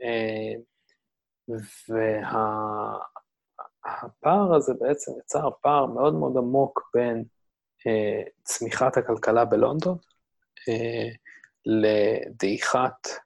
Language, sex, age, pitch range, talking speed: Hebrew, male, 20-39, 110-120 Hz, 75 wpm